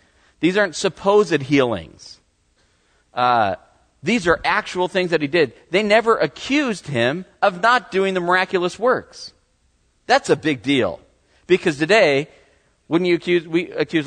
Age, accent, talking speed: 40-59, American, 140 wpm